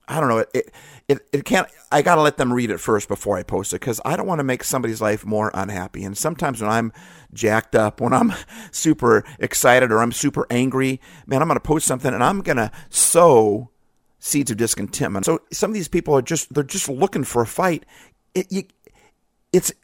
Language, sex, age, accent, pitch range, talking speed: English, male, 50-69, American, 110-155 Hz, 220 wpm